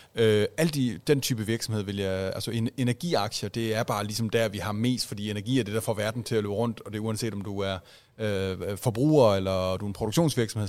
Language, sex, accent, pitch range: Danish, male, native, 105-120 Hz